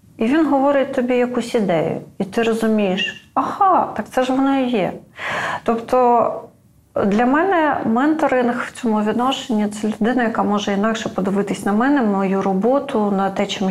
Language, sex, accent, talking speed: Ukrainian, female, native, 160 wpm